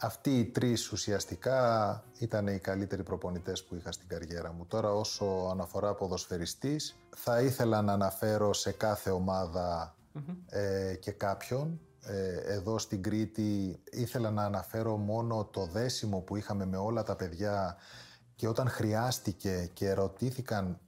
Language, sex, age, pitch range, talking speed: Greek, male, 30-49, 95-115 Hz, 140 wpm